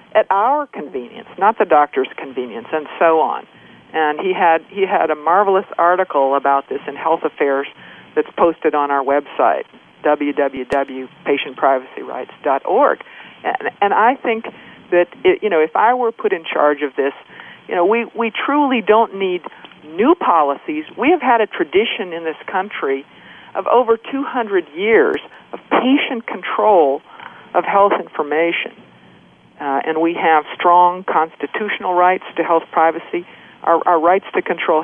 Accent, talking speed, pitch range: American, 150 wpm, 160-240 Hz